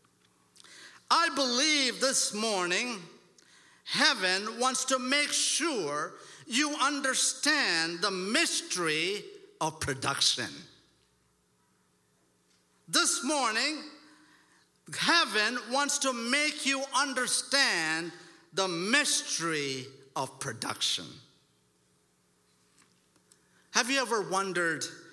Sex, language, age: male, English, 50-69